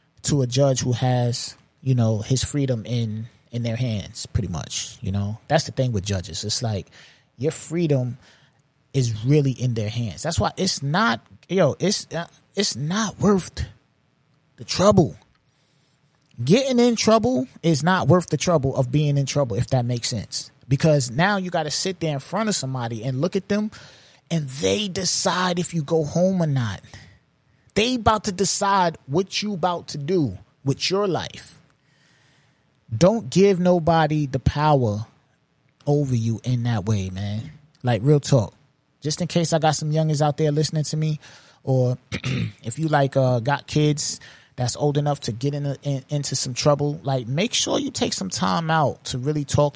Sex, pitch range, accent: male, 125-160 Hz, American